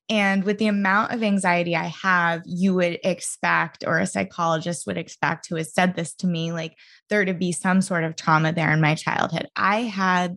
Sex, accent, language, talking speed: female, American, English, 210 wpm